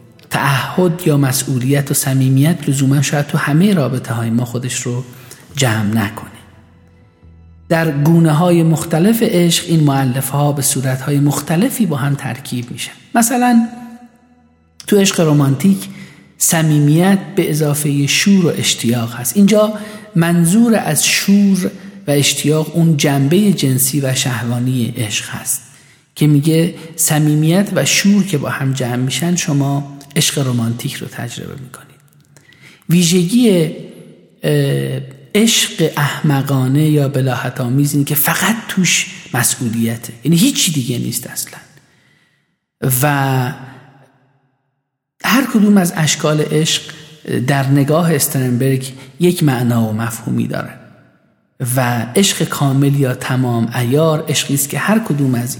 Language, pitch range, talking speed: Persian, 130-170 Hz, 120 wpm